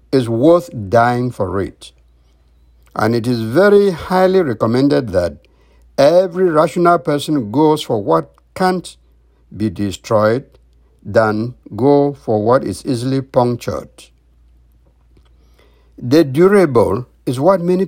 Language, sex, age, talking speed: English, male, 60-79, 110 wpm